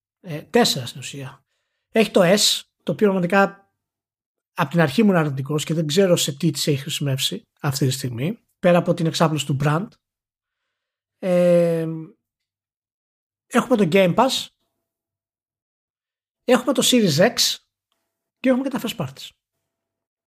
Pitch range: 155-225 Hz